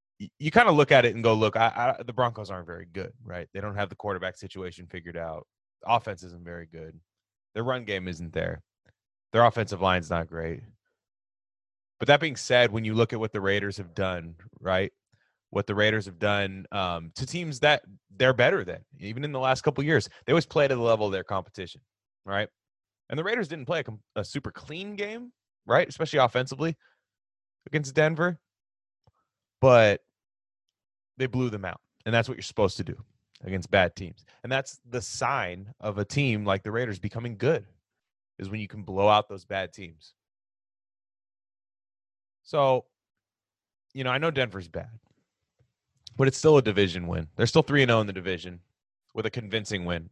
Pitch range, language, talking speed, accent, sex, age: 95-135 Hz, English, 185 wpm, American, male, 20-39